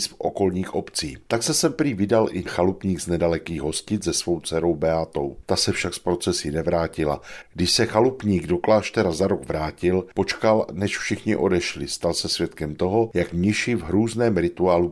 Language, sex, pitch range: Czech, male, 85-100 Hz